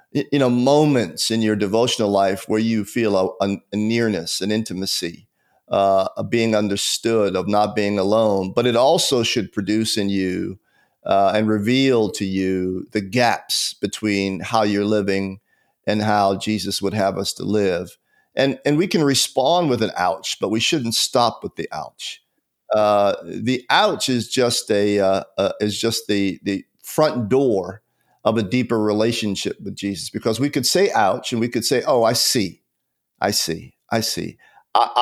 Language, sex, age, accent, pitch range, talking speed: English, male, 50-69, American, 105-125 Hz, 175 wpm